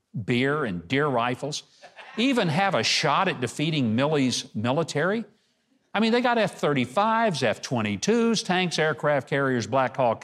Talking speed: 135 wpm